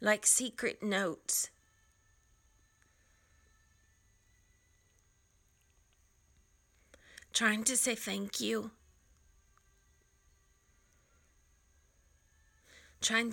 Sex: female